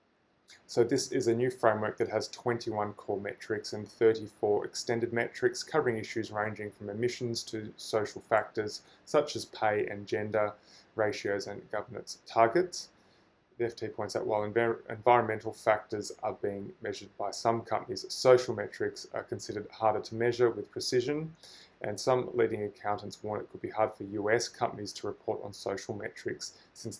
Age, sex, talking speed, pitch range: 20-39, male, 160 wpm, 105-125 Hz